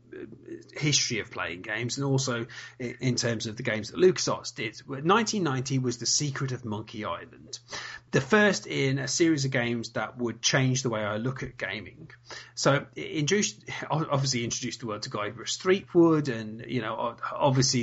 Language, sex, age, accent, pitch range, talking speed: English, male, 30-49, British, 120-150 Hz, 170 wpm